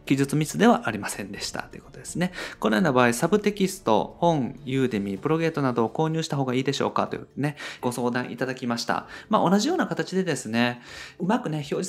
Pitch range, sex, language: 115-180 Hz, male, Japanese